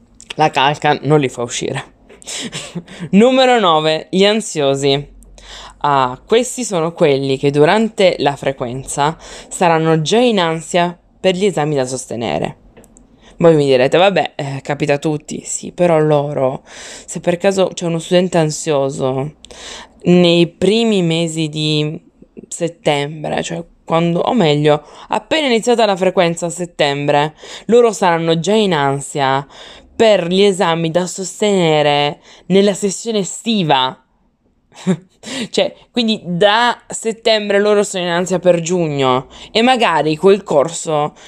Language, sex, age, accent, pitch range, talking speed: Italian, female, 20-39, native, 150-210 Hz, 125 wpm